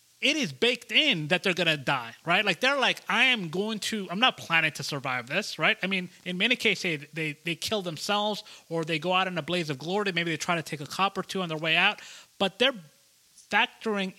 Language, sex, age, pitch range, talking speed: English, male, 30-49, 165-210 Hz, 240 wpm